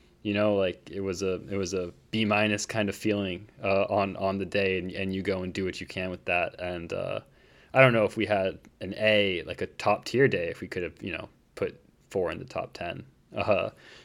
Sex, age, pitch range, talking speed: male, 20-39, 95-110 Hz, 250 wpm